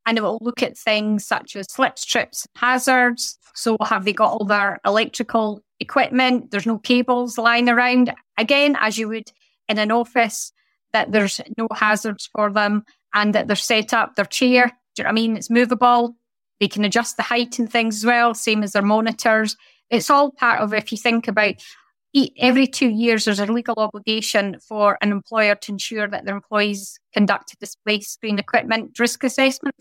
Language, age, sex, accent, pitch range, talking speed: English, 30-49, female, British, 210-245 Hz, 190 wpm